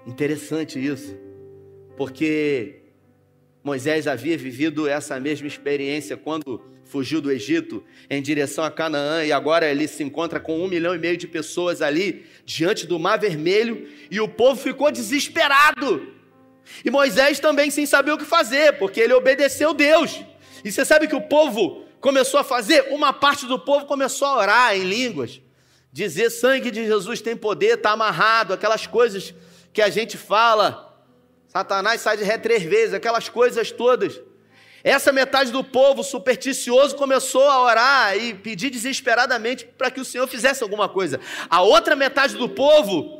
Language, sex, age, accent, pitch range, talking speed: Portuguese, male, 40-59, Brazilian, 175-275 Hz, 160 wpm